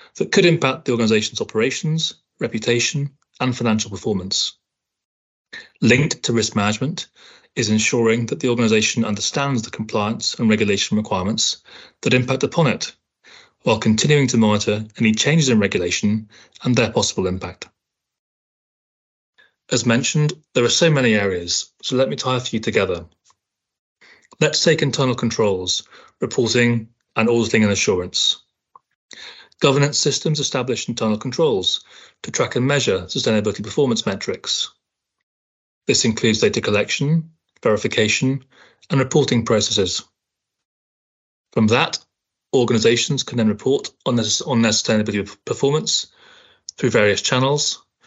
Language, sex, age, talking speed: English, male, 30-49, 120 wpm